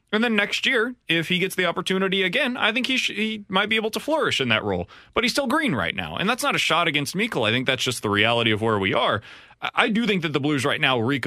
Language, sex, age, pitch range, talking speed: English, male, 30-49, 125-195 Hz, 300 wpm